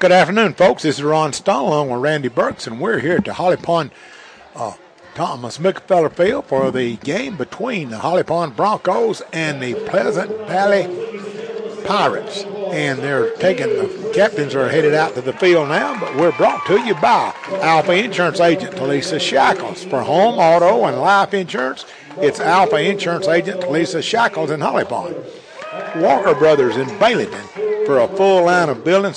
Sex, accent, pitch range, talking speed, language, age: male, American, 150-195 Hz, 170 wpm, English, 60-79